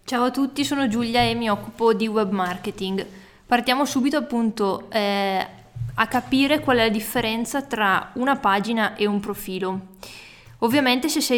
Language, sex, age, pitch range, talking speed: Italian, female, 20-39, 195-240 Hz, 160 wpm